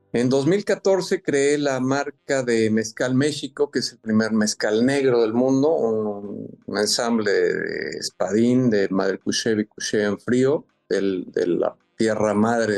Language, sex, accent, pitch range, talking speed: Spanish, male, Mexican, 105-140 Hz, 150 wpm